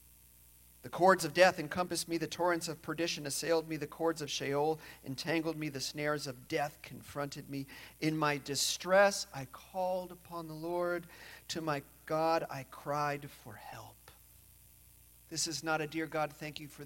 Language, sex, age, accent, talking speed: English, male, 40-59, American, 170 wpm